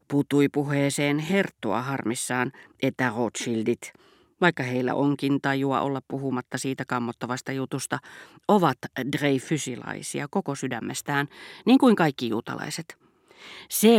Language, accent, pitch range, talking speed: Finnish, native, 130-160 Hz, 100 wpm